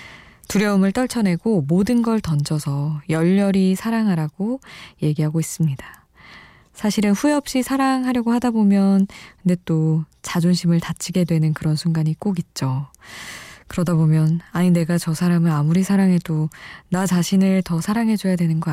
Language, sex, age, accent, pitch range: Korean, female, 20-39, native, 160-210 Hz